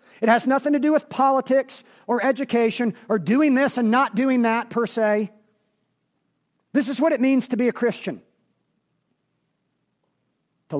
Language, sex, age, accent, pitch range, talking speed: English, male, 40-59, American, 165-225 Hz, 155 wpm